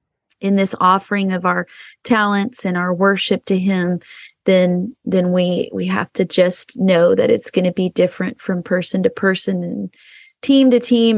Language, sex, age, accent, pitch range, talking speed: English, female, 30-49, American, 185-235 Hz, 175 wpm